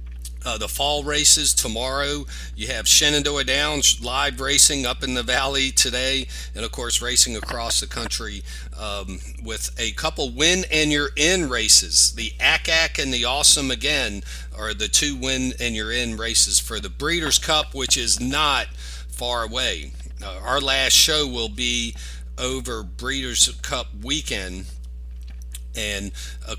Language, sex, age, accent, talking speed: English, male, 40-59, American, 150 wpm